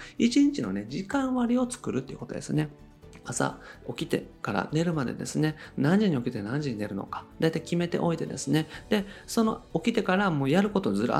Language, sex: Japanese, male